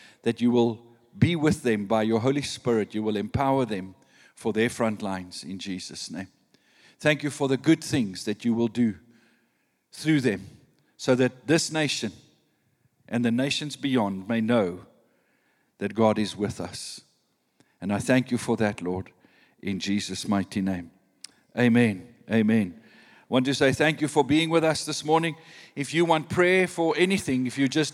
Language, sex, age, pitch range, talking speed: English, male, 50-69, 125-165 Hz, 175 wpm